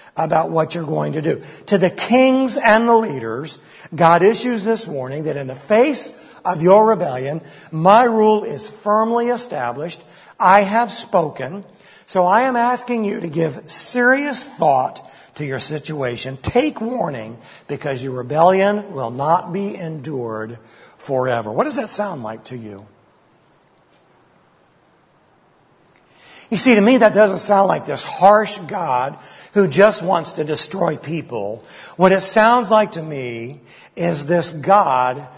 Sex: male